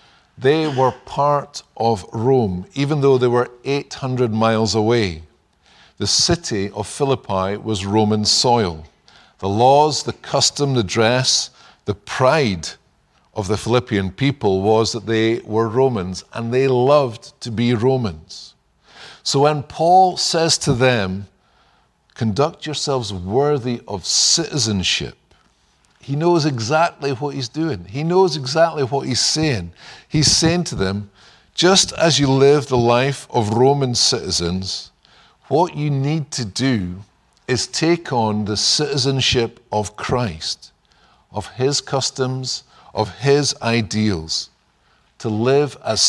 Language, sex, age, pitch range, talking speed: English, male, 50-69, 105-140 Hz, 130 wpm